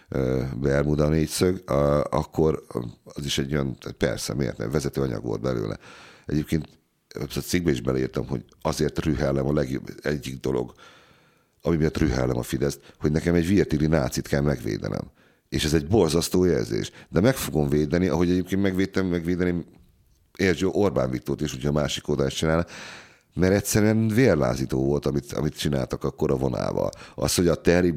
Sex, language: male, Hungarian